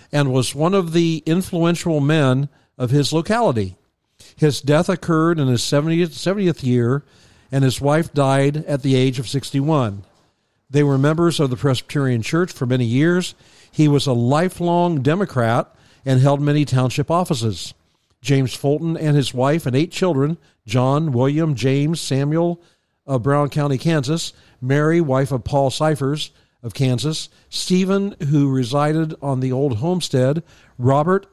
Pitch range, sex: 130-160 Hz, male